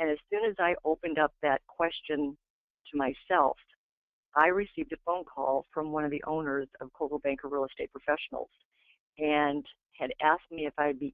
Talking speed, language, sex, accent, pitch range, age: 185 wpm, English, female, American, 140-165 Hz, 50-69